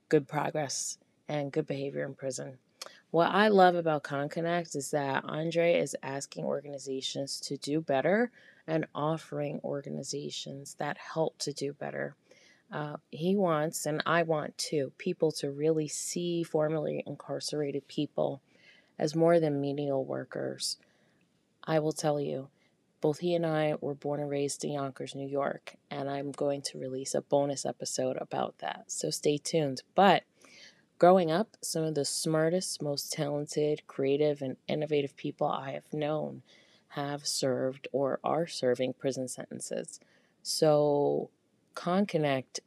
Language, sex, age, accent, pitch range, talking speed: English, female, 20-39, American, 135-155 Hz, 145 wpm